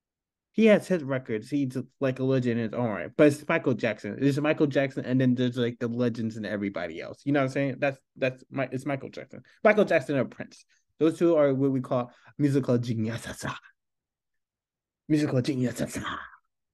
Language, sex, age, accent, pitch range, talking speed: English, male, 20-39, American, 110-140 Hz, 190 wpm